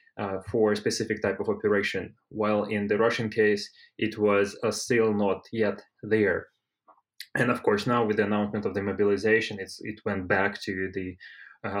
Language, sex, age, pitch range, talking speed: English, male, 20-39, 105-120 Hz, 185 wpm